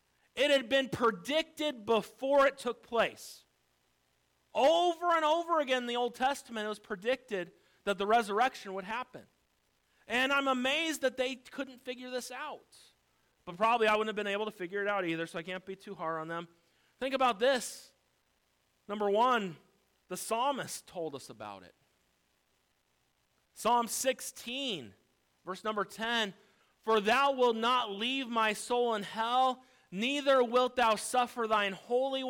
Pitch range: 195-275 Hz